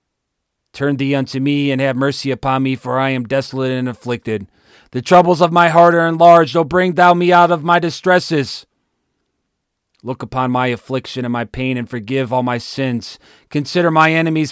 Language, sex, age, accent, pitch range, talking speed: English, male, 30-49, American, 120-160 Hz, 185 wpm